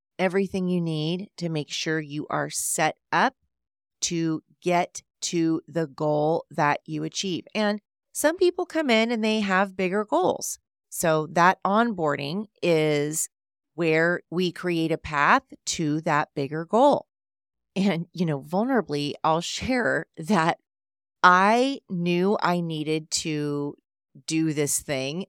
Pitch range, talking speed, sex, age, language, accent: 145-195 Hz, 135 wpm, female, 30-49, English, American